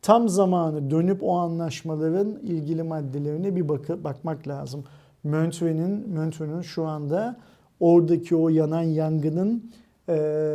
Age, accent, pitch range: 50-69, native, 145-170 Hz